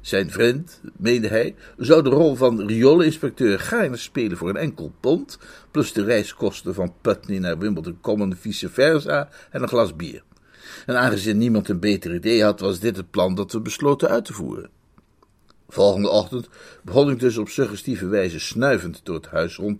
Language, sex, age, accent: Dutch, male, 50-69, Dutch